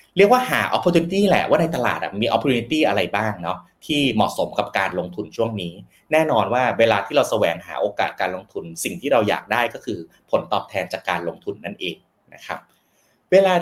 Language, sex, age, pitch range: Thai, male, 30-49, 105-165 Hz